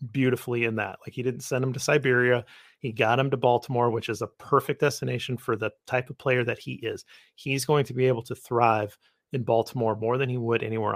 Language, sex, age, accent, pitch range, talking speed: English, male, 30-49, American, 120-145 Hz, 230 wpm